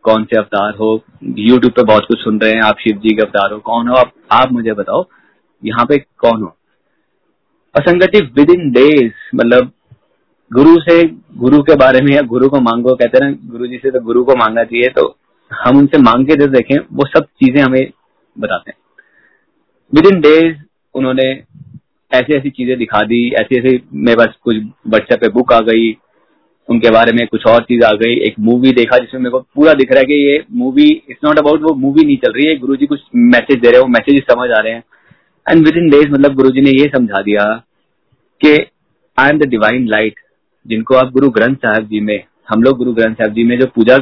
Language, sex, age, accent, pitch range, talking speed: Hindi, male, 30-49, native, 115-145 Hz, 150 wpm